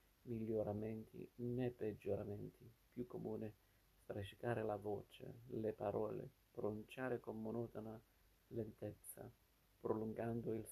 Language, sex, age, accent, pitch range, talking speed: Italian, male, 50-69, native, 100-115 Hz, 90 wpm